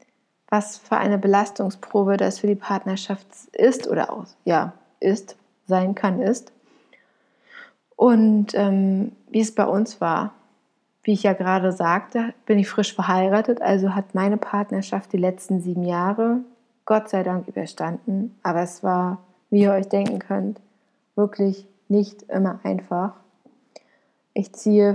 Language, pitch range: German, 190-225 Hz